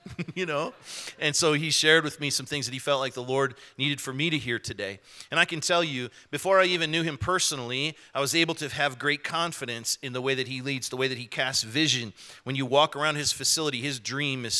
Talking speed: 250 wpm